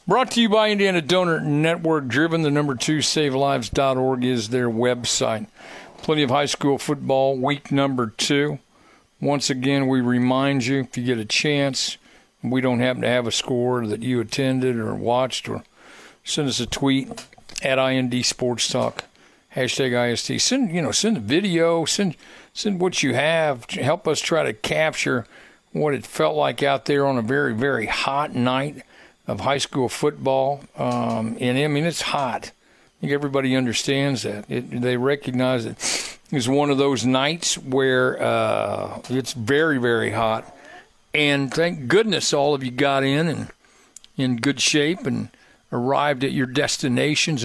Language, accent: English, American